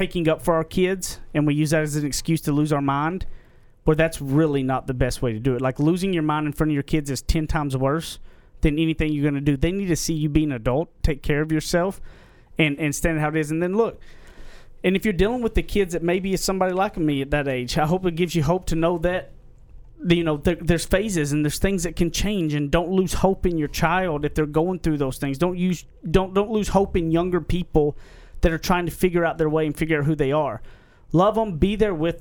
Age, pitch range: 30-49, 140-175 Hz